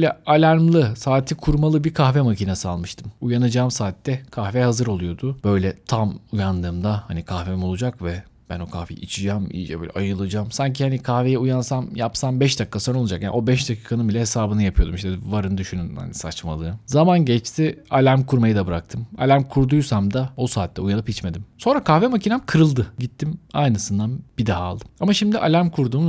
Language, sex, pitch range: Turkish, male, 100-140 Hz